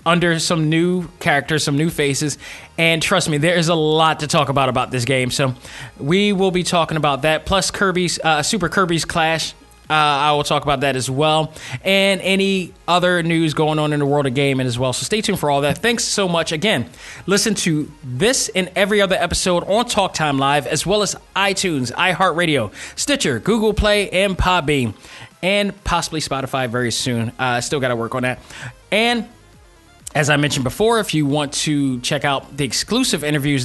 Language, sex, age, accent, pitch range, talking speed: English, male, 20-39, American, 140-190 Hz, 200 wpm